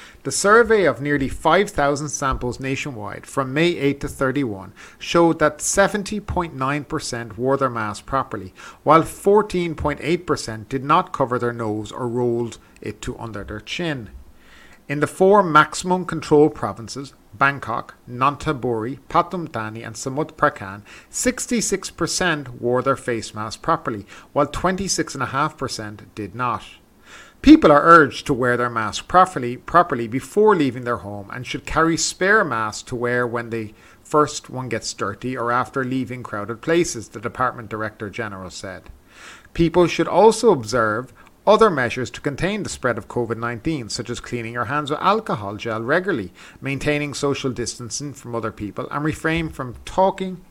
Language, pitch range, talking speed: English, 115-160 Hz, 145 wpm